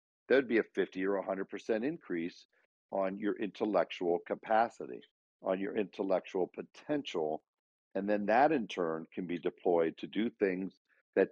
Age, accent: 50-69, American